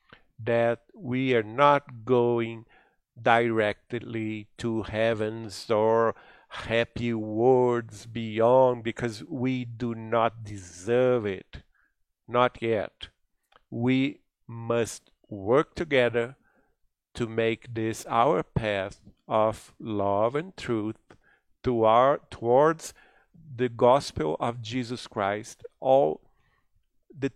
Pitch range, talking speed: 110-135 Hz, 95 wpm